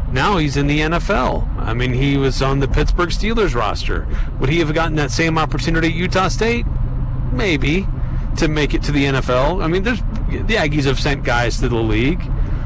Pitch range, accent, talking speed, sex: 120-145 Hz, American, 200 wpm, male